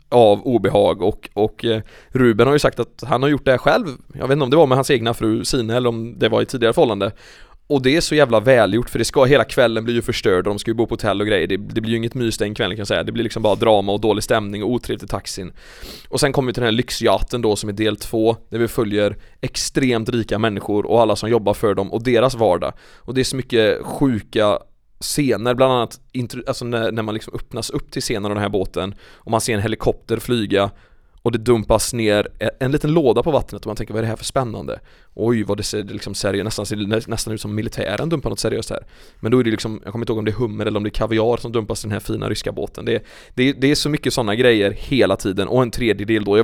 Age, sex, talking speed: 20-39, male, 265 wpm